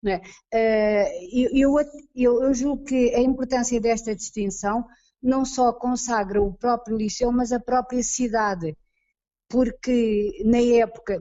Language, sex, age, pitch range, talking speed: Portuguese, female, 20-39, 195-235 Hz, 125 wpm